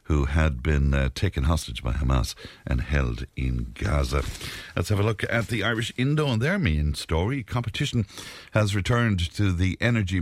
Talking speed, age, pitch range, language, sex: 175 wpm, 60-79, 70-100 Hz, English, male